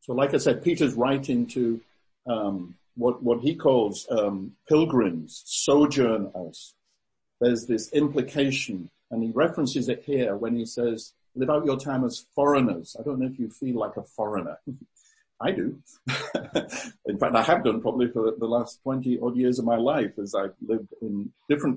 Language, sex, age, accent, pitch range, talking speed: English, male, 50-69, British, 115-140 Hz, 170 wpm